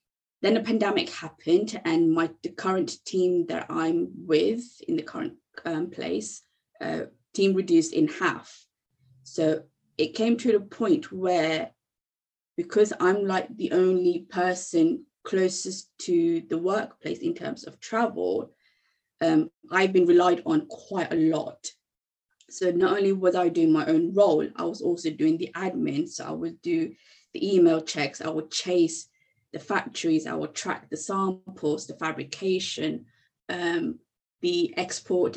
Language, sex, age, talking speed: English, female, 20-39, 150 wpm